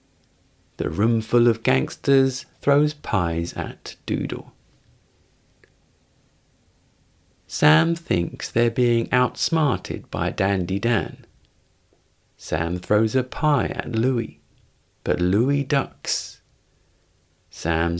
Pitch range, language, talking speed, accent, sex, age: 90-130 Hz, English, 85 wpm, British, male, 40-59